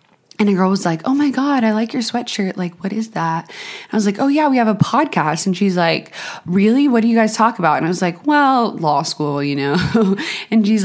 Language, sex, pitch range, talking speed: English, female, 160-205 Hz, 255 wpm